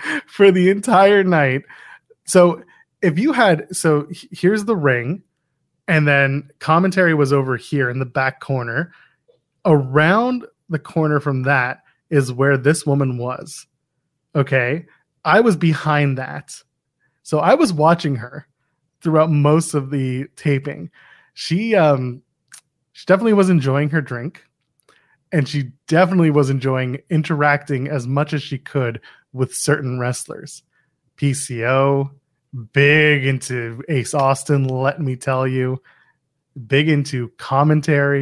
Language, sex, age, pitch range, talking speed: English, male, 20-39, 135-170 Hz, 125 wpm